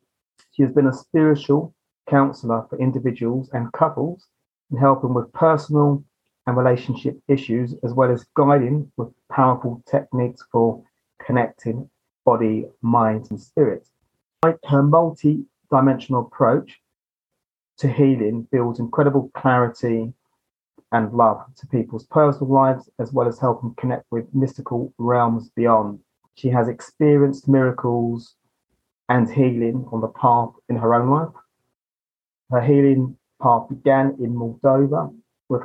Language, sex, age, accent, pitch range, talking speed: English, male, 30-49, British, 120-135 Hz, 125 wpm